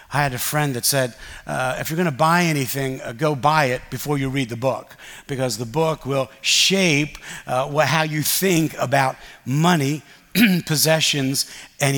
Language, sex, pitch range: English, male, 135-185 Hz